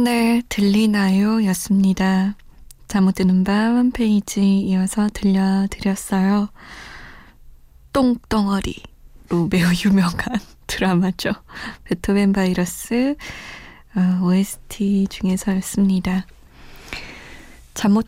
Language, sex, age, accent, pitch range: Korean, female, 20-39, native, 190-240 Hz